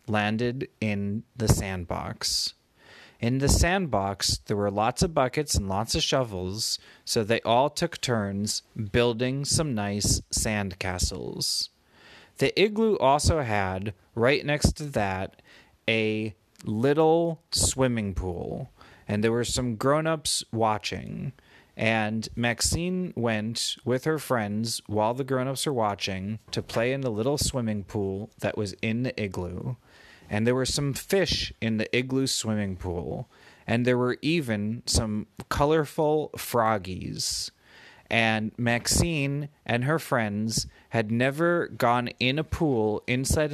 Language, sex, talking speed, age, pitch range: English, male, 130 wpm, 30-49, 105-130 Hz